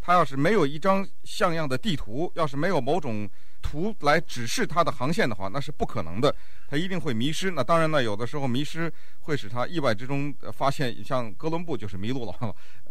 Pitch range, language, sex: 110-150 Hz, Chinese, male